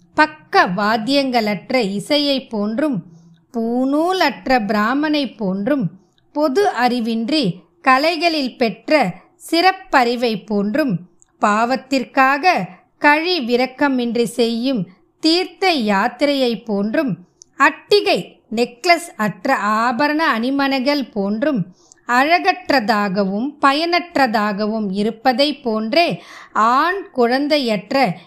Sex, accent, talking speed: female, native, 65 wpm